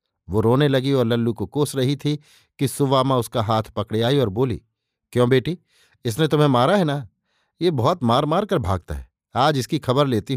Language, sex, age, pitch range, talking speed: Hindi, male, 50-69, 110-145 Hz, 210 wpm